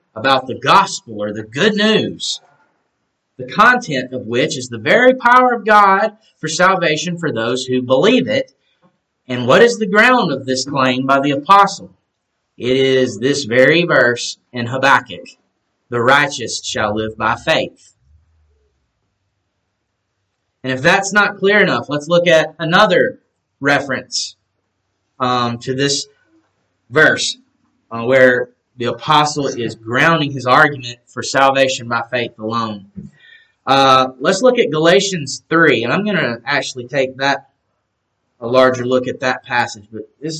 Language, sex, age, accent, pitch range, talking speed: English, male, 30-49, American, 120-155 Hz, 145 wpm